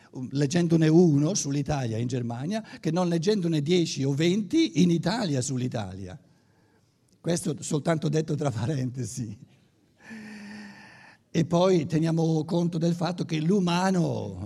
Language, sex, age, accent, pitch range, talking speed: Italian, male, 60-79, native, 125-165 Hz, 110 wpm